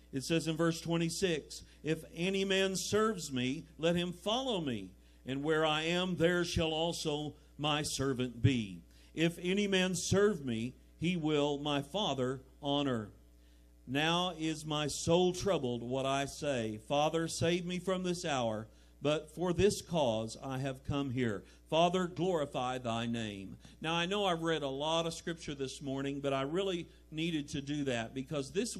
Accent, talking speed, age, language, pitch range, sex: American, 165 wpm, 50-69, English, 130-180 Hz, male